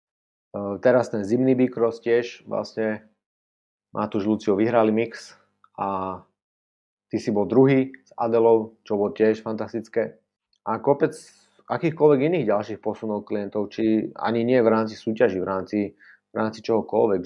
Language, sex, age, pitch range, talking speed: Slovak, male, 30-49, 110-130 Hz, 140 wpm